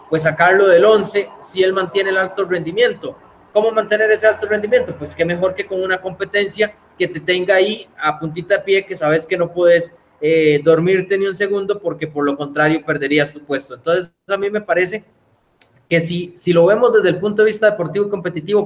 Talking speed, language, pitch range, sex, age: 210 wpm, Spanish, 160-200 Hz, male, 20-39